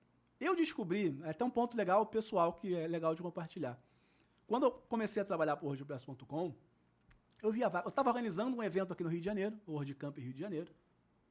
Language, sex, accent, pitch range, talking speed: Portuguese, male, Brazilian, 155-240 Hz, 200 wpm